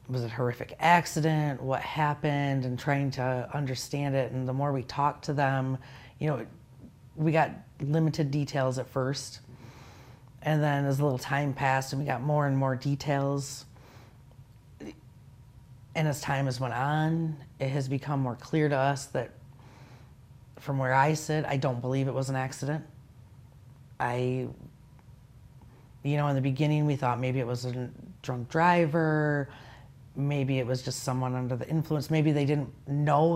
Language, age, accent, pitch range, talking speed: English, 40-59, American, 130-150 Hz, 165 wpm